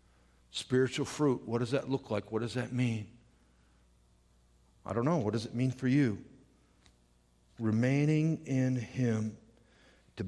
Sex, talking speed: male, 140 wpm